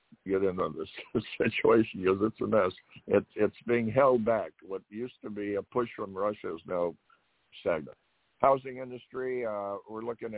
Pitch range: 95-125 Hz